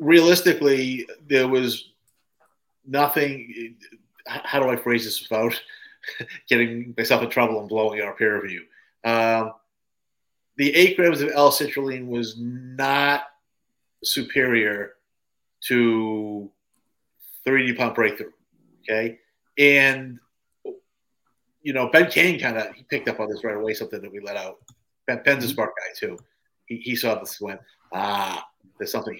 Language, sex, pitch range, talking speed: English, male, 110-135 Hz, 140 wpm